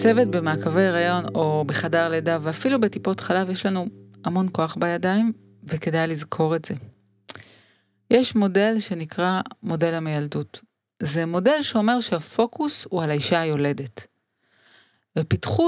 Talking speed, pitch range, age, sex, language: 125 wpm, 155-205 Hz, 30-49, female, Hebrew